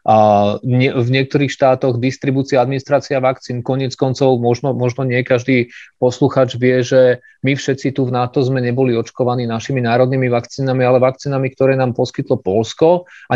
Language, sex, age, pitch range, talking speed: Slovak, male, 30-49, 115-135 Hz, 155 wpm